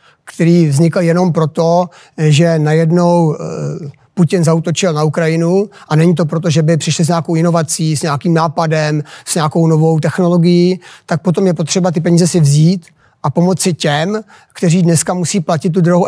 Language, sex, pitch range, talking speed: Czech, male, 165-190 Hz, 165 wpm